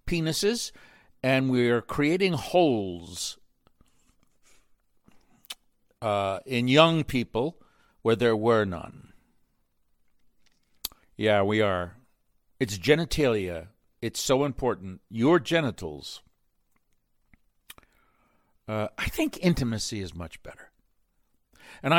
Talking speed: 85 wpm